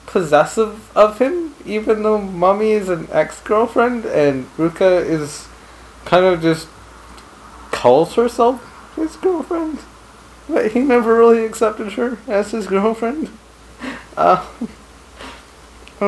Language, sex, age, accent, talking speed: English, male, 30-49, American, 110 wpm